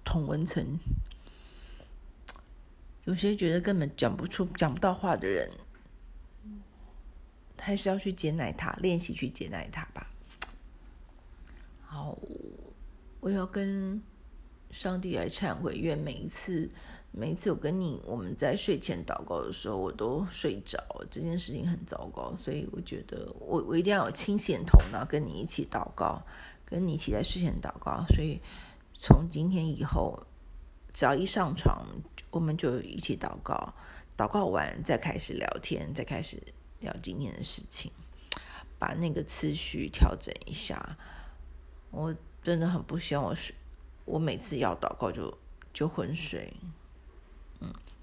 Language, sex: Chinese, female